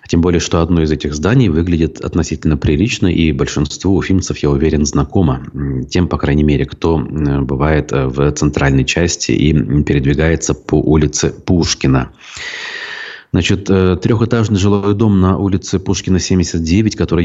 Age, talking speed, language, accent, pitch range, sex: 30-49, 135 wpm, Russian, native, 80-95 Hz, male